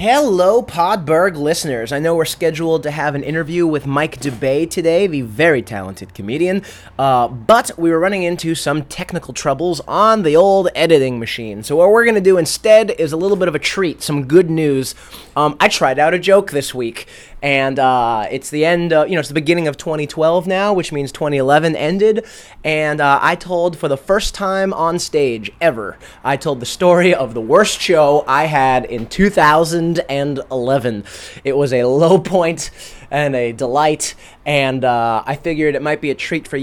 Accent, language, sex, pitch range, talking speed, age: American, English, male, 130-170 Hz, 190 wpm, 20-39